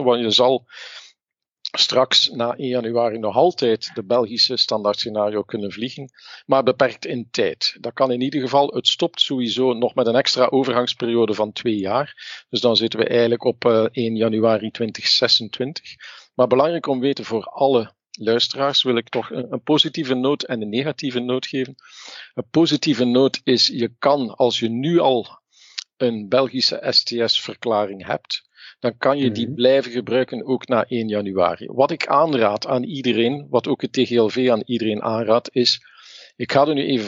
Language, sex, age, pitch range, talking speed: Dutch, male, 50-69, 115-130 Hz, 165 wpm